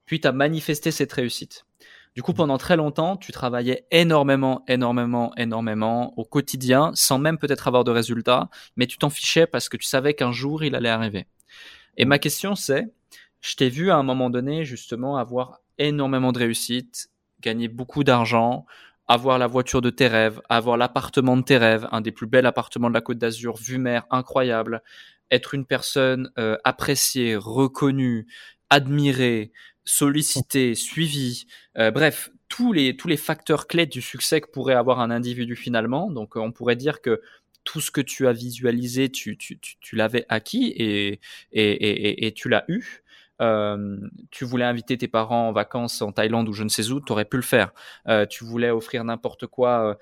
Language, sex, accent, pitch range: French, male, French, 115-140 Hz